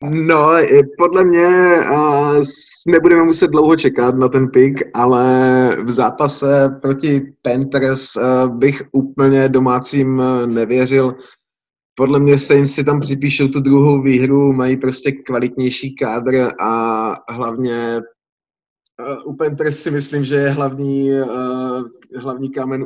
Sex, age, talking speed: male, 20-39, 135 wpm